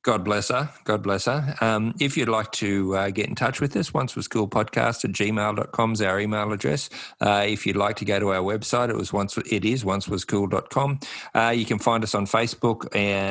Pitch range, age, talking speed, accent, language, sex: 95-115 Hz, 50-69, 235 wpm, Australian, English, male